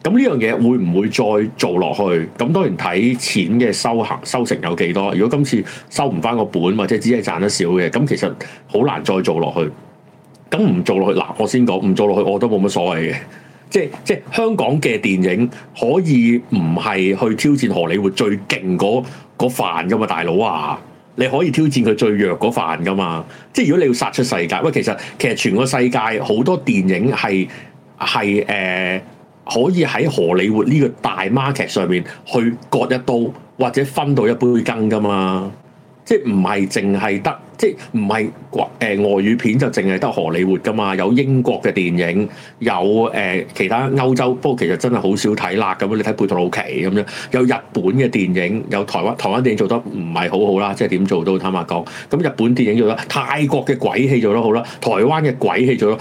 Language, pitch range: Chinese, 95-130 Hz